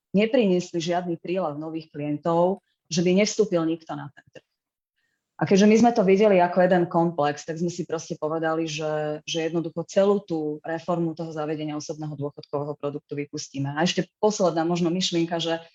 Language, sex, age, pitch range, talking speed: Slovak, female, 20-39, 155-175 Hz, 170 wpm